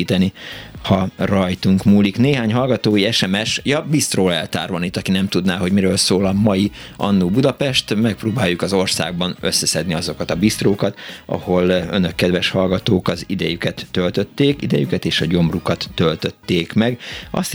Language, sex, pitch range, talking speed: Hungarian, male, 90-105 Hz, 140 wpm